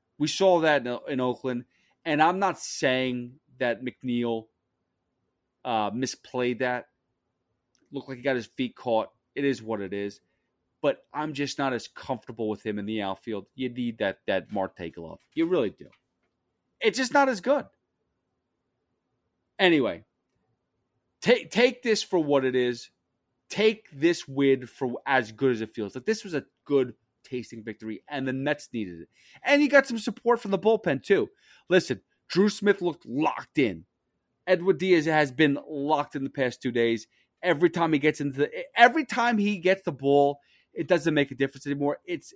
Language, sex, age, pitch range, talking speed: English, male, 30-49, 125-185 Hz, 175 wpm